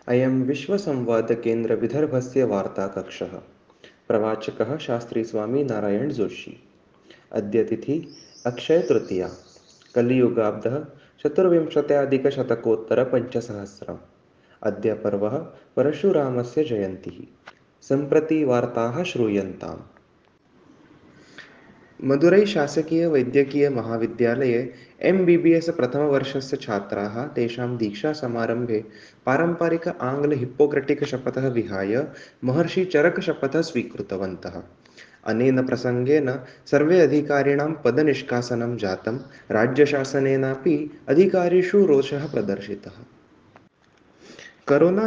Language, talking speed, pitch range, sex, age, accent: Hindi, 70 wpm, 115-150 Hz, male, 20-39, native